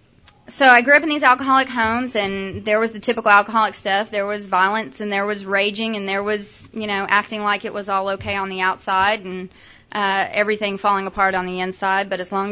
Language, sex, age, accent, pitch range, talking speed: English, female, 20-39, American, 185-215 Hz, 225 wpm